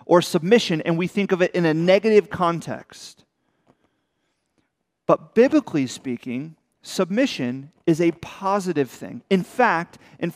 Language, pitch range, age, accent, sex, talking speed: English, 155-210 Hz, 40-59, American, male, 125 wpm